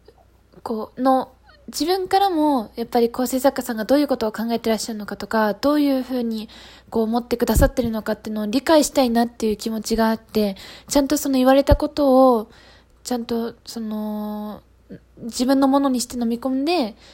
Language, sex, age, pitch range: Japanese, female, 20-39, 220-275 Hz